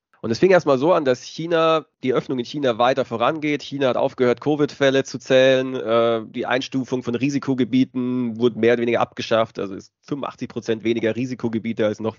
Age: 30-49